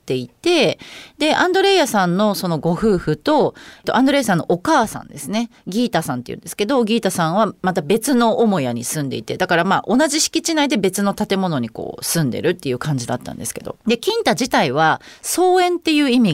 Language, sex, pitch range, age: Japanese, female, 165-275 Hz, 30-49